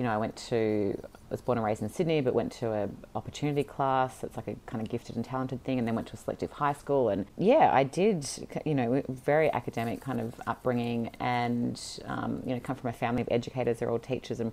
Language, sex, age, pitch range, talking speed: English, female, 30-49, 115-150 Hz, 250 wpm